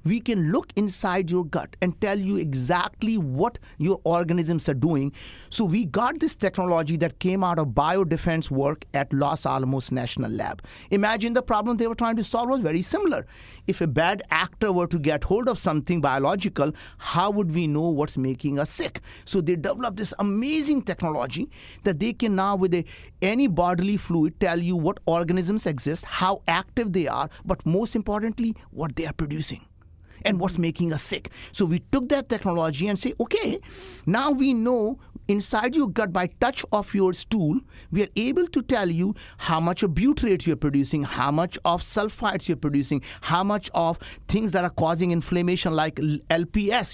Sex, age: male, 50-69